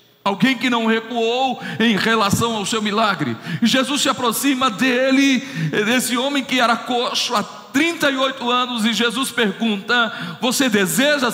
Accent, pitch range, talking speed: Brazilian, 215-260 Hz, 145 wpm